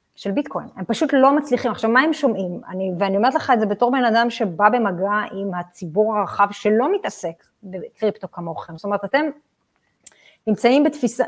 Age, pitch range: 30-49, 195-275 Hz